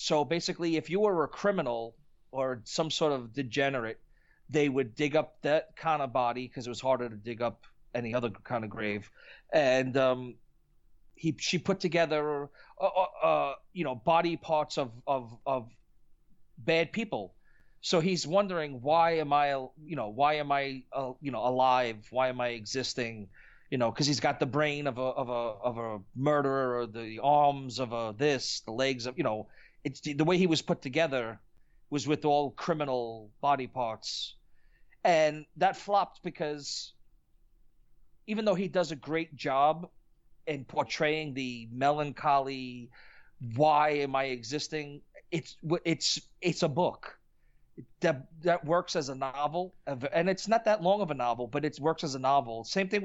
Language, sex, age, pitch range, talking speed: English, male, 30-49, 125-165 Hz, 175 wpm